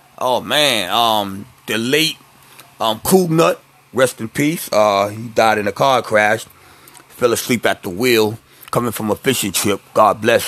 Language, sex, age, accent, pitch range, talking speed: English, male, 30-49, American, 100-125 Hz, 165 wpm